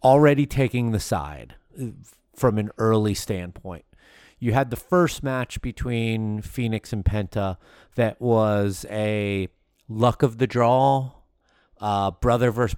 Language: English